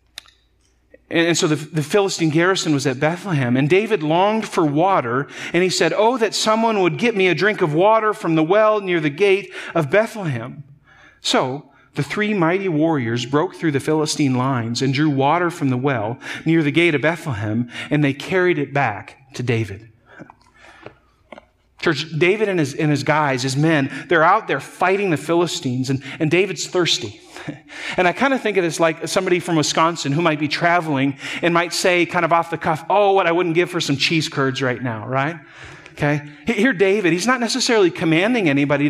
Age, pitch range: 40-59, 135-180 Hz